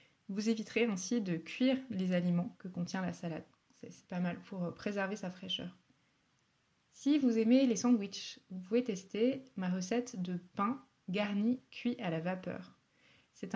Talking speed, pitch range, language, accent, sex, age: 160 wpm, 175-230 Hz, French, French, female, 20-39